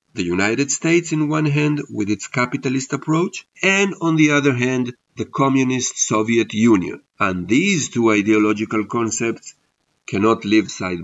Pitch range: 110-150 Hz